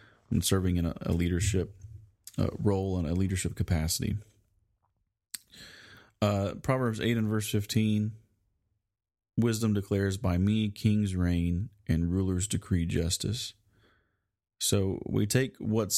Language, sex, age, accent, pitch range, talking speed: English, male, 30-49, American, 90-105 Hz, 120 wpm